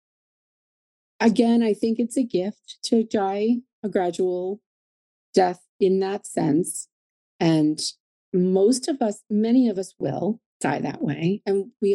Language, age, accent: English, 30-49, American